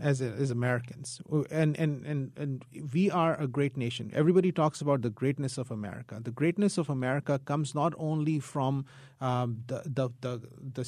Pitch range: 125-150 Hz